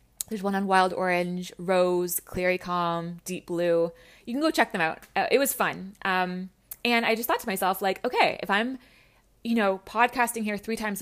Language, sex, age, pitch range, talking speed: English, female, 20-39, 180-220 Hz, 195 wpm